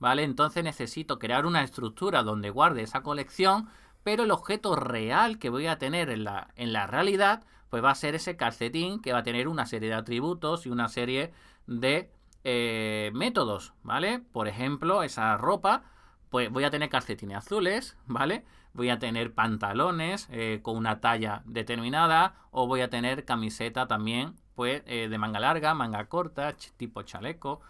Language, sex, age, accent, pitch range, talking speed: Spanish, male, 30-49, Spanish, 115-170 Hz, 170 wpm